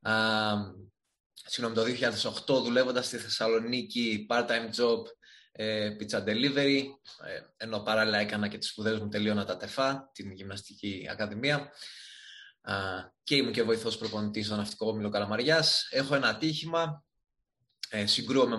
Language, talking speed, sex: Greek, 130 wpm, male